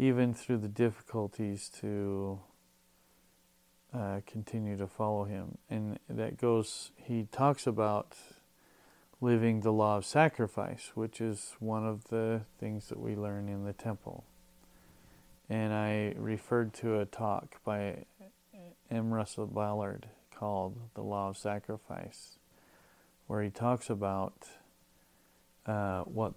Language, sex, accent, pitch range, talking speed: English, male, American, 95-115 Hz, 125 wpm